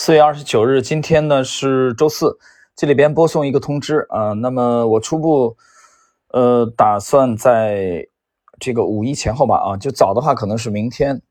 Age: 20-39